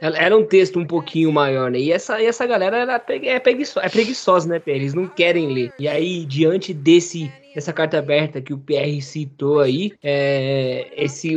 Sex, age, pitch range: male, 20-39, 145-175 Hz